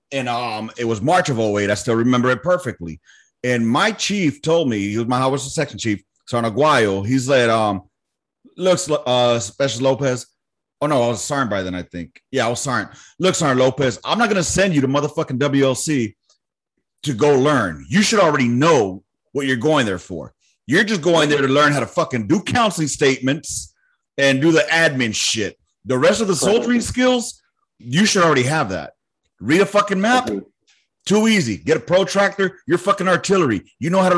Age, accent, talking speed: 30-49, American, 200 wpm